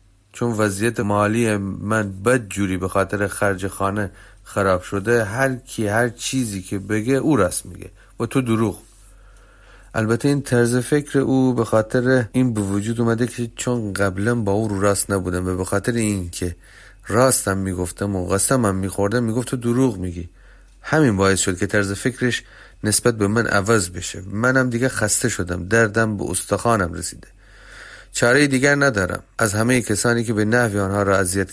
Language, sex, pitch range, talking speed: Persian, male, 100-120 Hz, 165 wpm